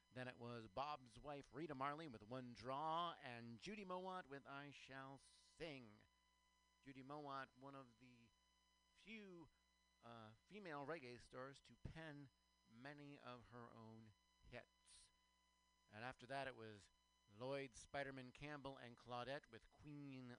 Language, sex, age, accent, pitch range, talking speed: English, male, 50-69, American, 105-145 Hz, 135 wpm